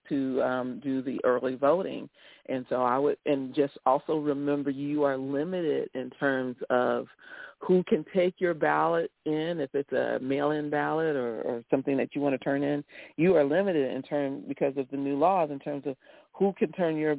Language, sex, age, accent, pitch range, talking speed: English, female, 40-59, American, 130-155 Hz, 200 wpm